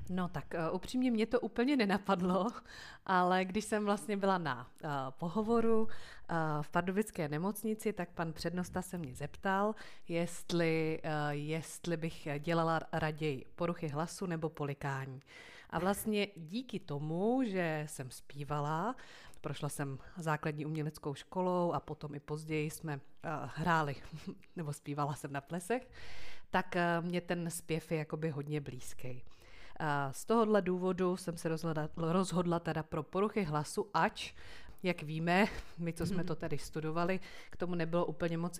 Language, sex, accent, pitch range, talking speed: Czech, female, native, 150-180 Hz, 145 wpm